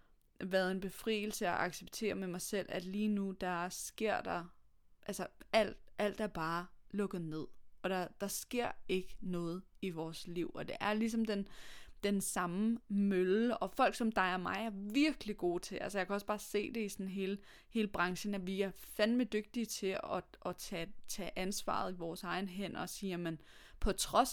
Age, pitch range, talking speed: 20-39, 180-210 Hz, 195 wpm